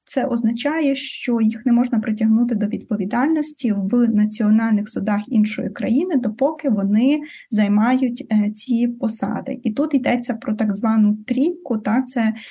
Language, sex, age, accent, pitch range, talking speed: Ukrainian, female, 20-39, native, 215-250 Hz, 140 wpm